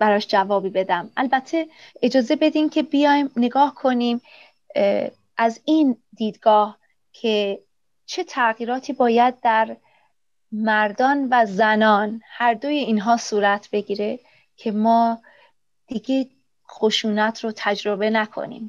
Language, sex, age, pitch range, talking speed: Persian, female, 30-49, 210-255 Hz, 105 wpm